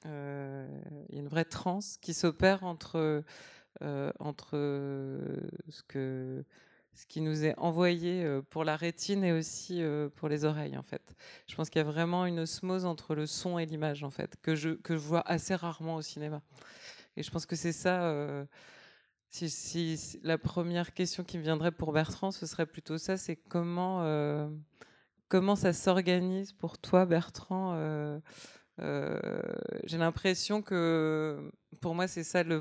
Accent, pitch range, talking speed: French, 150-180 Hz, 170 wpm